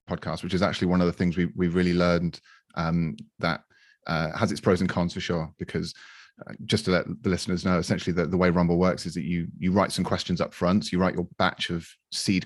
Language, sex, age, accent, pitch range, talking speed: English, male, 30-49, British, 85-95 Hz, 250 wpm